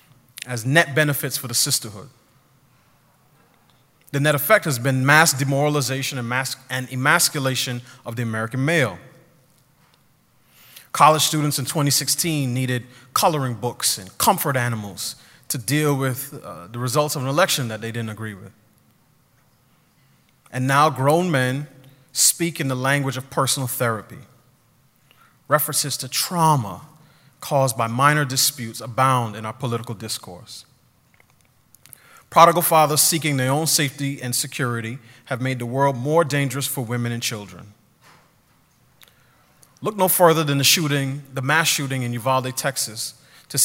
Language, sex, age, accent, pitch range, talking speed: English, male, 30-49, American, 125-150 Hz, 135 wpm